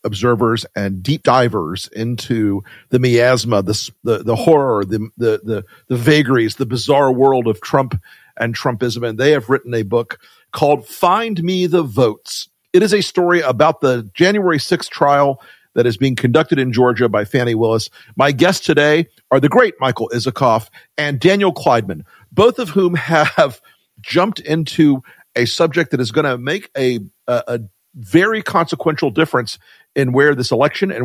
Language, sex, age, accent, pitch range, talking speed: English, male, 50-69, American, 120-165 Hz, 165 wpm